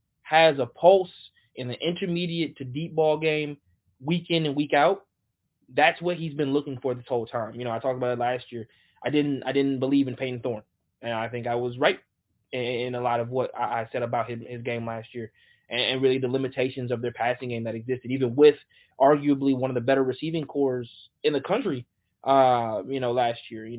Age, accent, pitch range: 20-39, American, 120-150 Hz